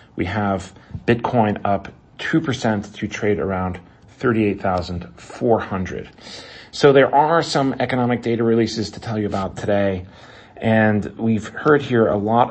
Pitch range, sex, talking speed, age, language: 95-115 Hz, male, 130 wpm, 30-49, English